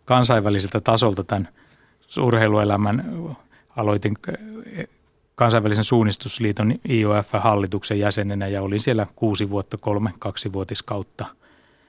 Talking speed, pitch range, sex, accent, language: 85 wpm, 105-115 Hz, male, native, Finnish